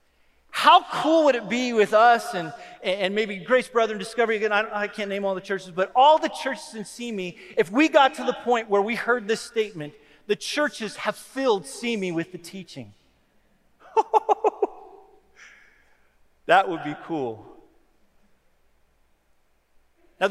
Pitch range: 190-260 Hz